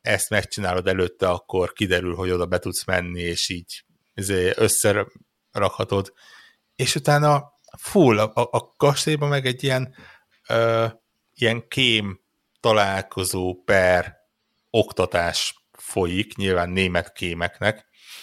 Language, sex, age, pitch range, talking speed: Hungarian, male, 60-79, 95-120 Hz, 105 wpm